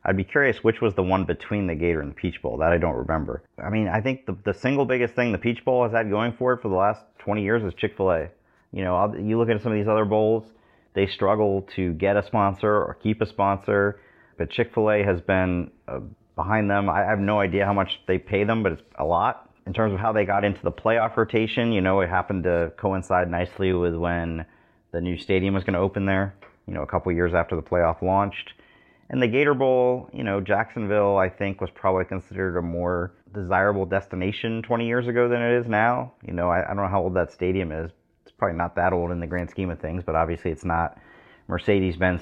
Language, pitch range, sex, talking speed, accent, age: English, 90-105 Hz, male, 240 wpm, American, 30-49